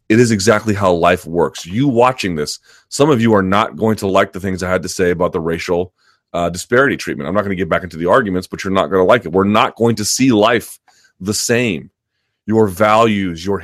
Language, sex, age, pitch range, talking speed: English, male, 30-49, 95-115 Hz, 245 wpm